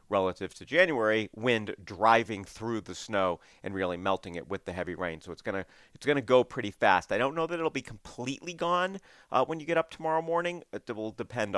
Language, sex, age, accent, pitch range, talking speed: English, male, 40-59, American, 90-115 Hz, 230 wpm